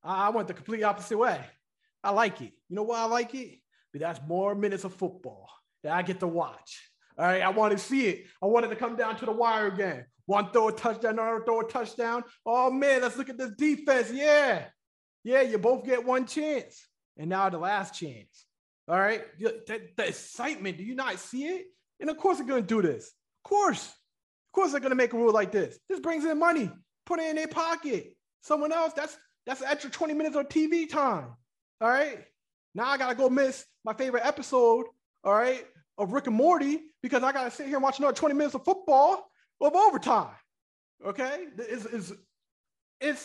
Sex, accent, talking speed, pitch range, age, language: male, American, 215 wpm, 195-280 Hz, 30-49, English